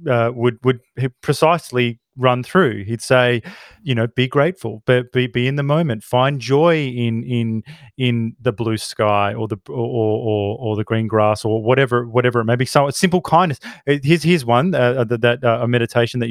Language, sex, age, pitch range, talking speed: English, male, 30-49, 115-145 Hz, 190 wpm